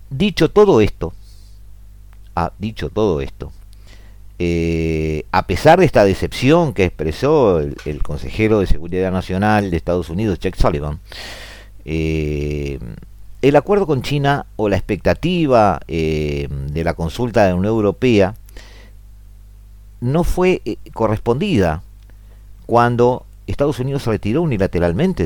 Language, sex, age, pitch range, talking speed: Spanish, male, 50-69, 85-115 Hz, 125 wpm